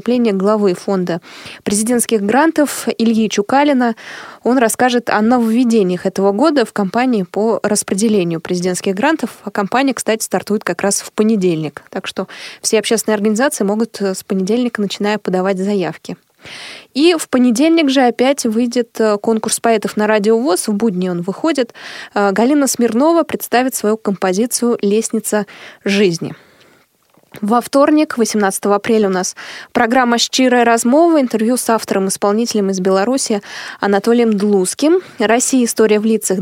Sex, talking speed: female, 130 wpm